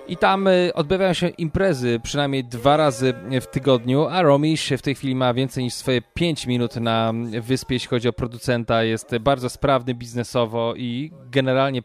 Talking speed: 165 wpm